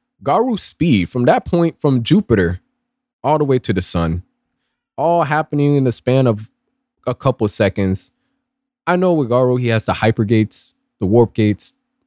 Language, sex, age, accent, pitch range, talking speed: English, male, 20-39, American, 105-160 Hz, 175 wpm